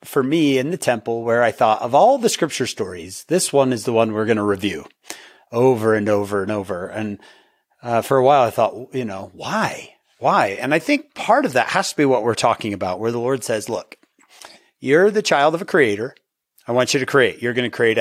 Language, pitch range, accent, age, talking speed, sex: English, 120-170 Hz, American, 30-49, 235 wpm, male